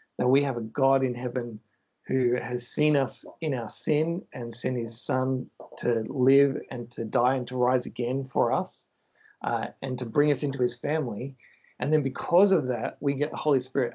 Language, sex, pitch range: English, male, 125-145 Hz